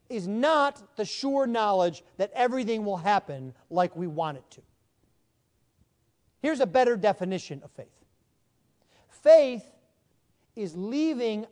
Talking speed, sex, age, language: 120 wpm, male, 40-59, English